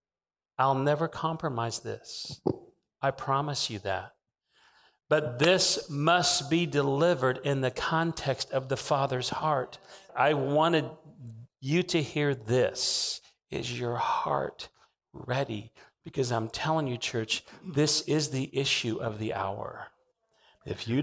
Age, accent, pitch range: 40-59, American, 115-145 Hz